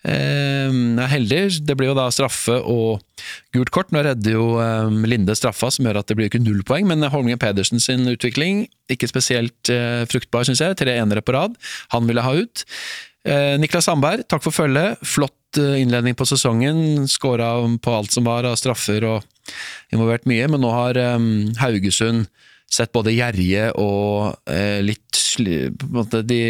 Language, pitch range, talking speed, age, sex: English, 110-135 Hz, 170 wpm, 20-39, male